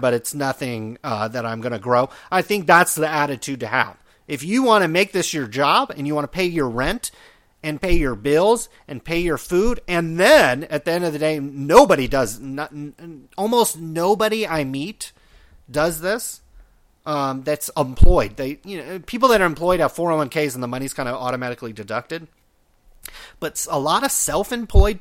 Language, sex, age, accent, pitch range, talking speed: English, male, 30-49, American, 130-175 Hz, 190 wpm